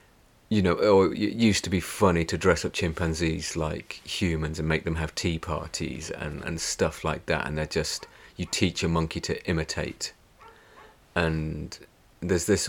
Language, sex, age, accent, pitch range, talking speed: English, male, 30-49, British, 80-110 Hz, 170 wpm